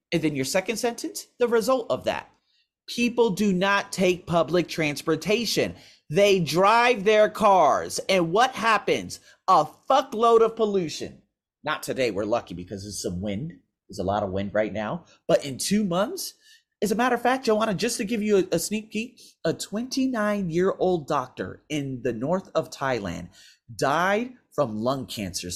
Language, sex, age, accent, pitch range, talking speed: English, male, 30-49, American, 140-230 Hz, 165 wpm